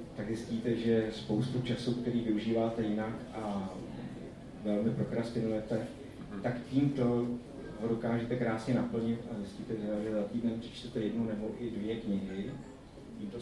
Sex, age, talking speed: male, 30-49, 130 wpm